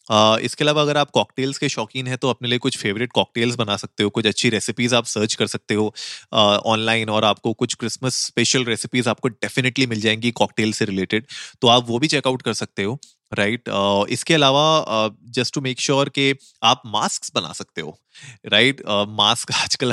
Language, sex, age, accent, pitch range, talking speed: Hindi, male, 30-49, native, 110-130 Hz, 210 wpm